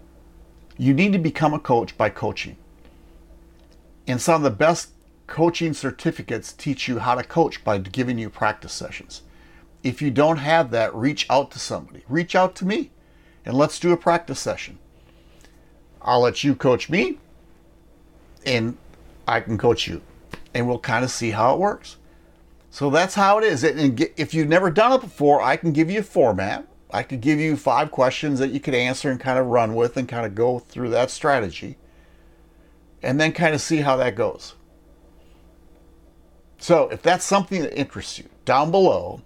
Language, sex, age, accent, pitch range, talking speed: English, male, 50-69, American, 120-155 Hz, 180 wpm